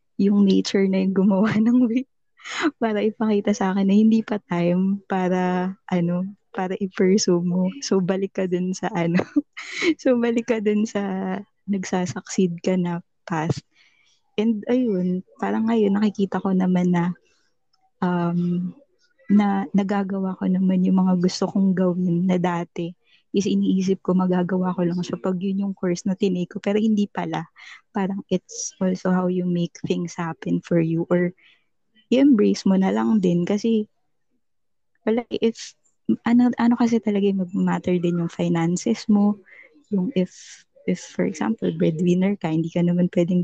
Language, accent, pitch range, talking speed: Filipino, native, 180-205 Hz, 155 wpm